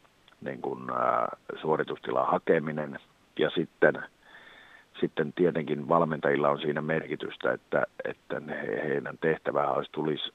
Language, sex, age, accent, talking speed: Finnish, male, 50-69, native, 105 wpm